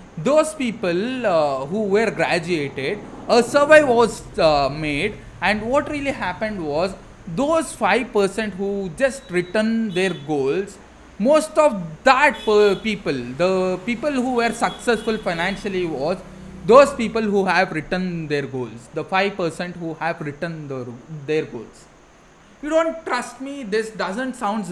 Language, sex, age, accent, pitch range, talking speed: English, male, 20-39, Indian, 155-220 Hz, 135 wpm